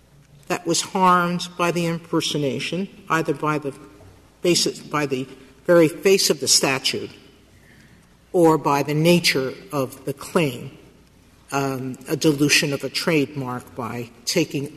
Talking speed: 130 wpm